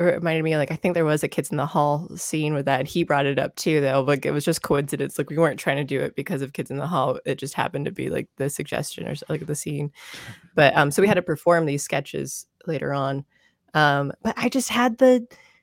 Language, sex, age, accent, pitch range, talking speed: English, female, 20-39, American, 155-220 Hz, 260 wpm